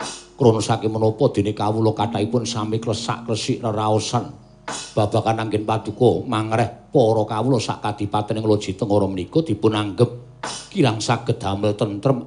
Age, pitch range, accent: 50-69, 110-155 Hz, native